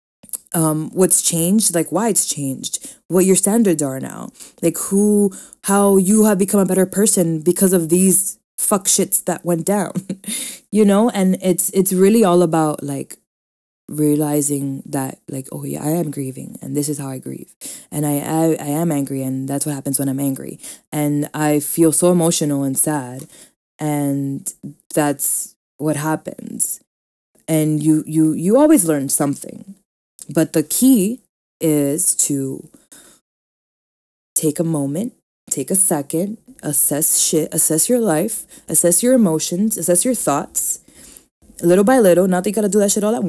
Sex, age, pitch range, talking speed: female, 20-39, 150-195 Hz, 160 wpm